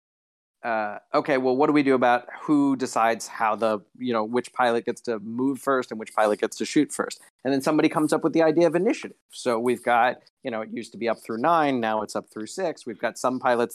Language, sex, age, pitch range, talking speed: English, male, 40-59, 115-145 Hz, 255 wpm